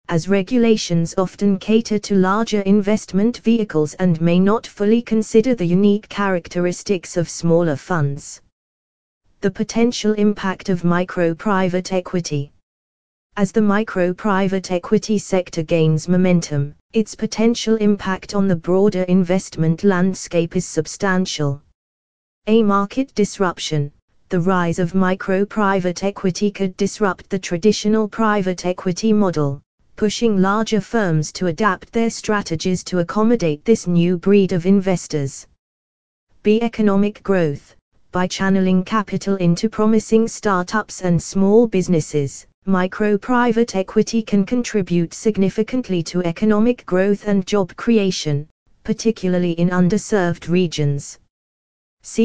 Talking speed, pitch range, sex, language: 115 wpm, 170-210 Hz, female, English